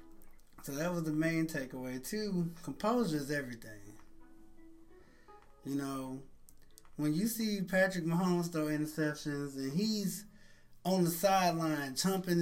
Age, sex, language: 20-39, male, English